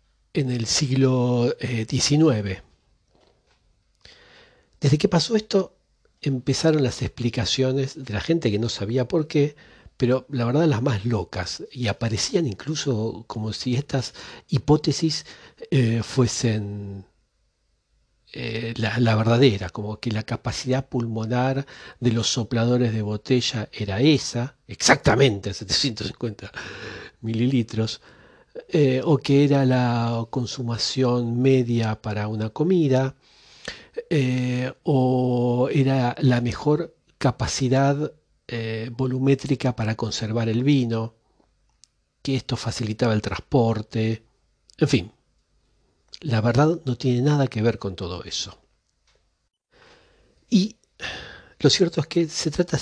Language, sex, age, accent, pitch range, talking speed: Spanish, male, 40-59, Argentinian, 115-140 Hz, 115 wpm